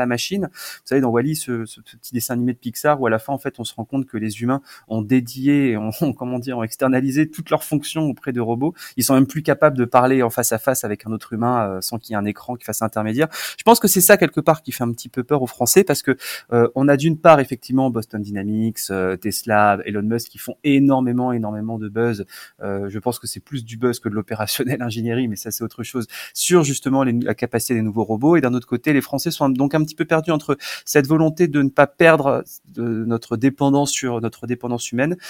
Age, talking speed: 20-39, 255 wpm